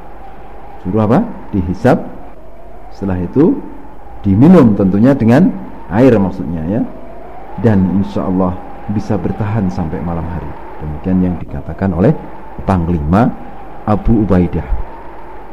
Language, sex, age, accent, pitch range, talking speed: Indonesian, male, 50-69, native, 90-135 Hz, 100 wpm